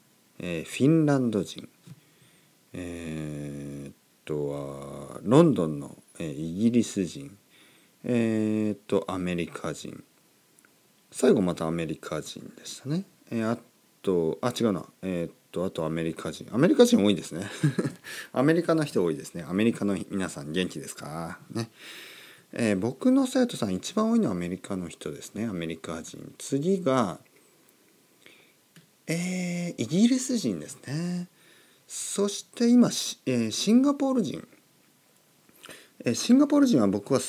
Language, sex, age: Japanese, male, 40-59